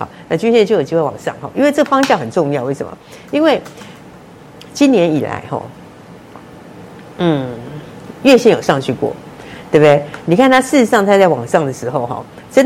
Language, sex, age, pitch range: Chinese, female, 50-69, 145-210 Hz